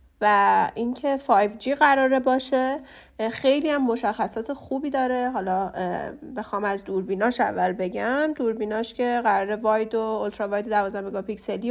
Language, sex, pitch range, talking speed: Persian, female, 205-270 Hz, 130 wpm